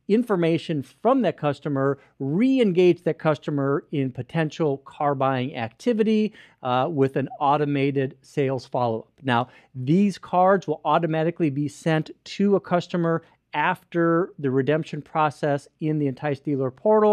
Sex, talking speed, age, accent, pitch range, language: male, 130 wpm, 40-59, American, 140-180 Hz, English